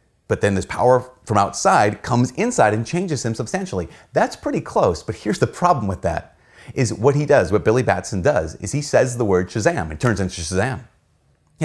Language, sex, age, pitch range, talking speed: English, male, 30-49, 95-125 Hz, 205 wpm